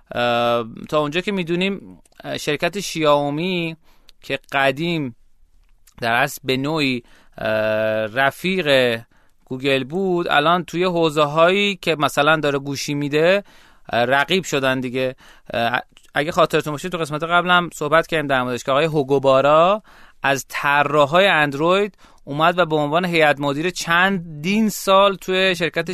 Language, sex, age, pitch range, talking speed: Persian, male, 30-49, 135-175 Hz, 125 wpm